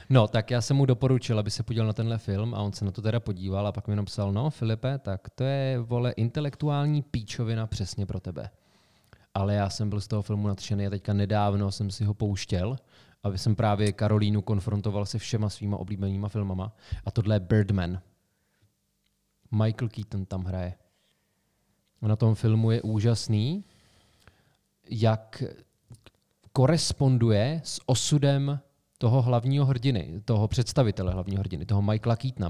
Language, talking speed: Czech, 160 wpm